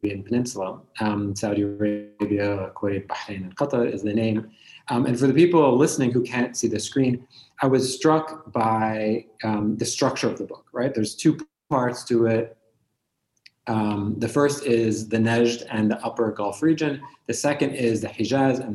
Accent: American